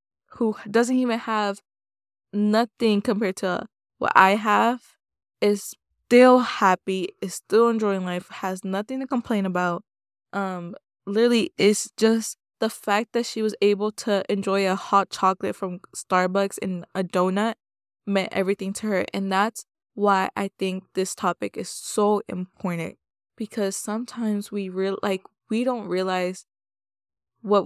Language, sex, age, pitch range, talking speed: English, female, 20-39, 185-210 Hz, 140 wpm